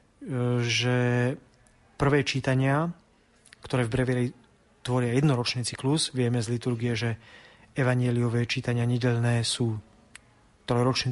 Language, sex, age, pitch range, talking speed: Slovak, male, 30-49, 125-150 Hz, 95 wpm